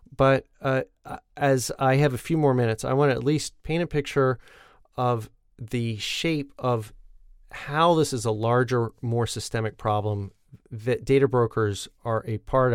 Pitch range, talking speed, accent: 110-140 Hz, 165 wpm, American